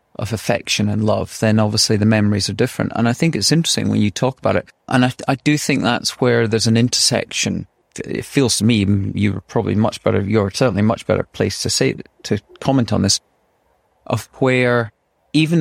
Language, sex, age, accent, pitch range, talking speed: English, male, 30-49, British, 105-130 Hz, 200 wpm